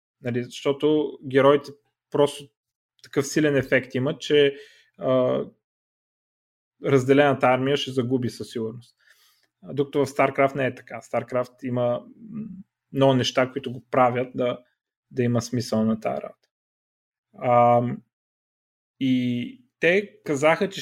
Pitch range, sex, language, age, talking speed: 120-145 Hz, male, Bulgarian, 30-49, 115 wpm